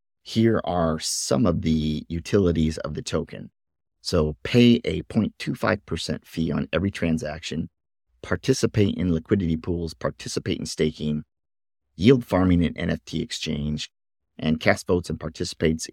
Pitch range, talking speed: 80-100 Hz, 130 wpm